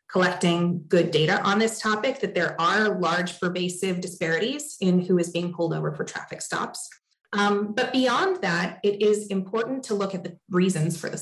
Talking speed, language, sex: 185 wpm, English, female